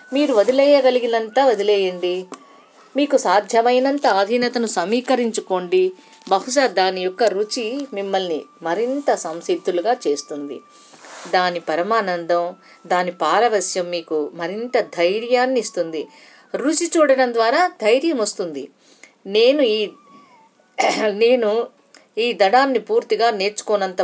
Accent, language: native, Telugu